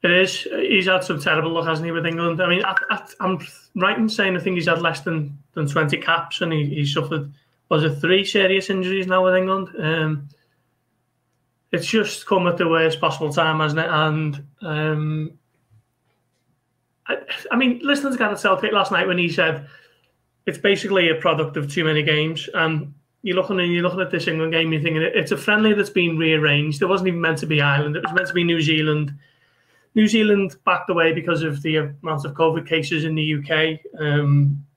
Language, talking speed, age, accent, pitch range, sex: English, 205 wpm, 30-49, British, 155-185 Hz, male